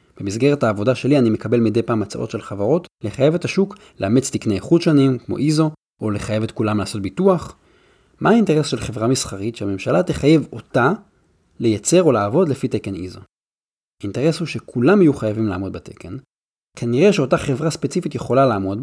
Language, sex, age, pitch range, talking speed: Hebrew, male, 30-49, 105-150 Hz, 165 wpm